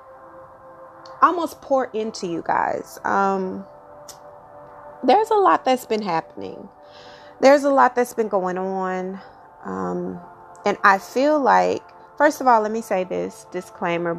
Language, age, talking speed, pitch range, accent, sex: English, 30-49, 135 wpm, 175-245 Hz, American, female